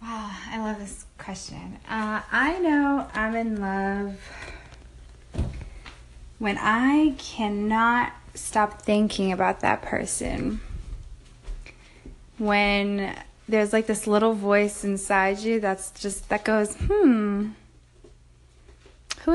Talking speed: 100 wpm